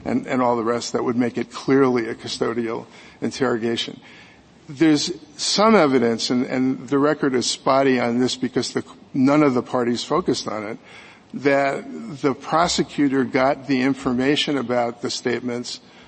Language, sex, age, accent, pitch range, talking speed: English, male, 50-69, American, 125-165 Hz, 155 wpm